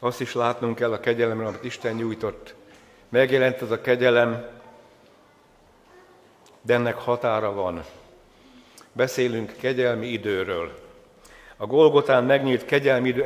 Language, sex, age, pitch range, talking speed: Hungarian, male, 60-79, 120-135 Hz, 115 wpm